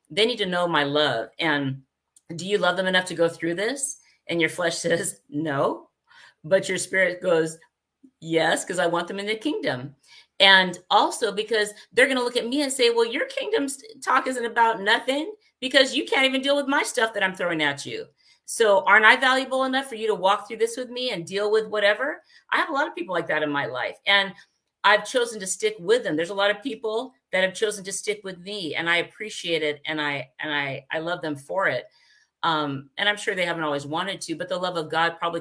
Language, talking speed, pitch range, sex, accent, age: English, 235 wpm, 155-220 Hz, female, American, 50-69